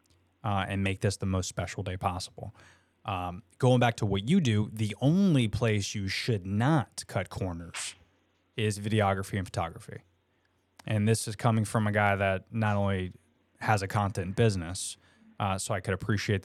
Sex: male